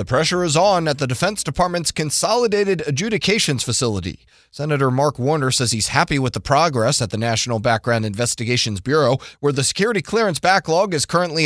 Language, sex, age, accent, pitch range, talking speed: English, male, 30-49, American, 135-195 Hz, 175 wpm